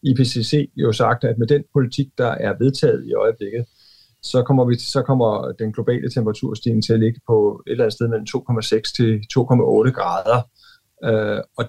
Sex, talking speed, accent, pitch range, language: male, 175 wpm, native, 110-135 Hz, Danish